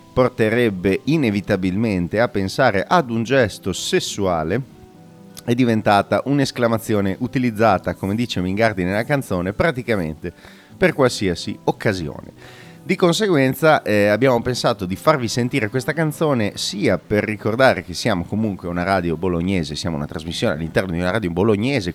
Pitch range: 95-130 Hz